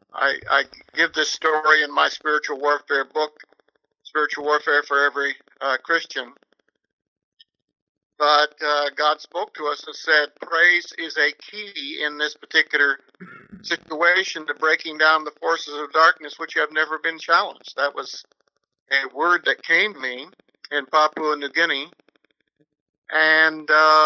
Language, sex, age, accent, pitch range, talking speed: English, male, 60-79, American, 145-160 Hz, 140 wpm